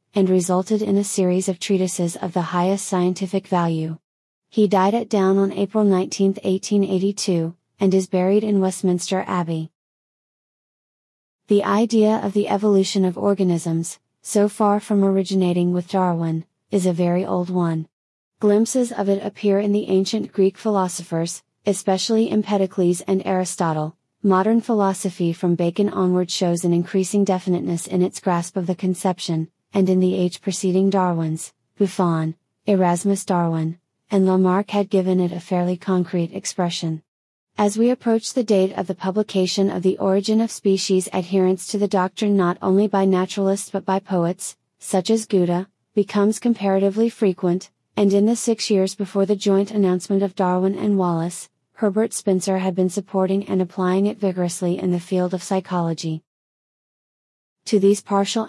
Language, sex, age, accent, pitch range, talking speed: English, female, 30-49, American, 180-200 Hz, 155 wpm